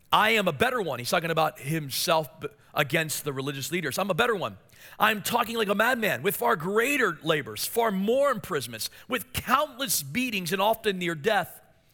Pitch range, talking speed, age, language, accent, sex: 160-230 Hz, 180 wpm, 40-59, English, American, male